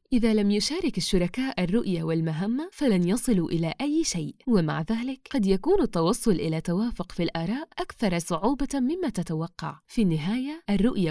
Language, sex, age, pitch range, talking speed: Arabic, female, 20-39, 175-260 Hz, 145 wpm